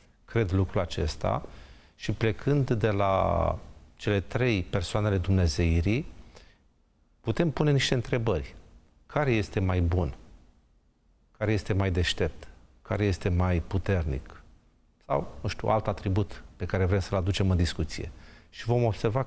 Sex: male